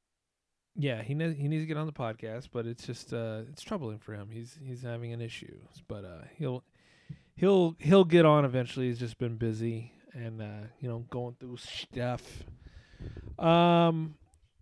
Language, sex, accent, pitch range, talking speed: English, male, American, 115-140 Hz, 175 wpm